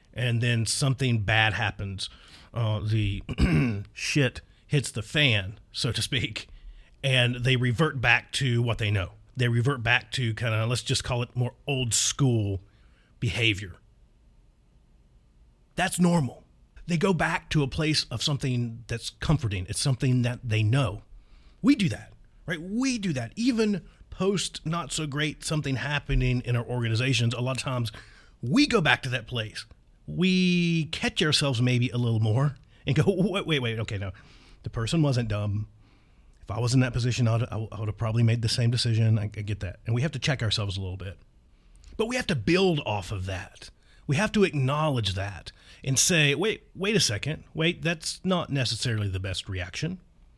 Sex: male